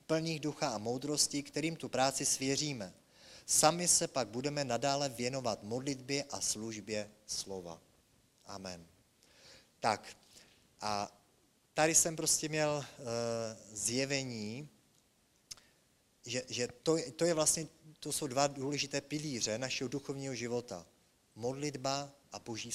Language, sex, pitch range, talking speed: English, male, 115-145 Hz, 115 wpm